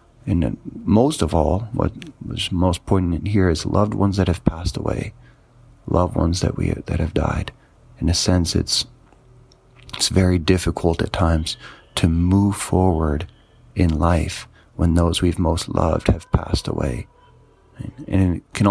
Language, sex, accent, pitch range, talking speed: English, male, American, 85-105 Hz, 155 wpm